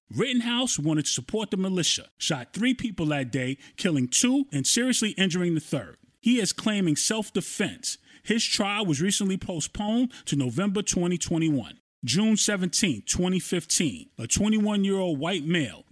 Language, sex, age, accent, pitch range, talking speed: English, male, 30-49, American, 155-210 Hz, 140 wpm